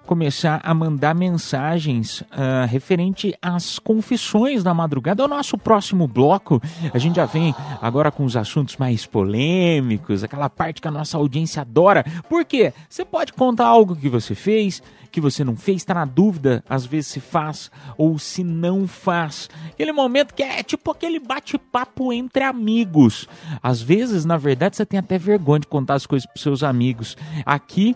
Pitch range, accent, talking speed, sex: 140-200 Hz, Brazilian, 175 wpm, male